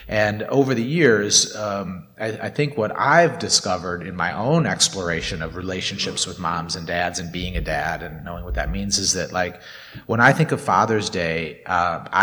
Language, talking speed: English, 195 wpm